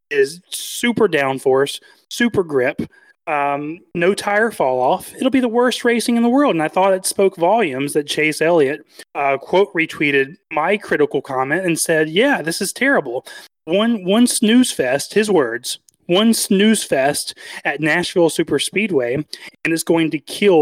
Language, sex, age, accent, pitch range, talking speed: English, male, 30-49, American, 145-210 Hz, 165 wpm